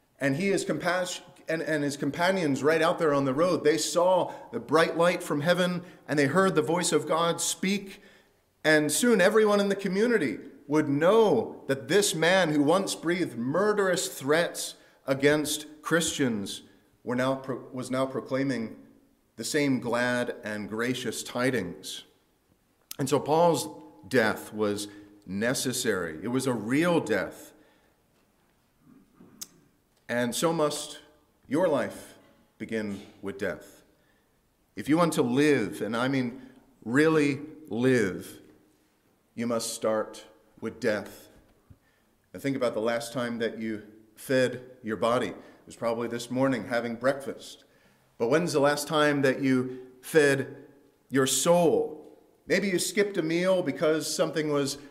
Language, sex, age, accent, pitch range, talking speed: English, male, 40-59, American, 130-170 Hz, 135 wpm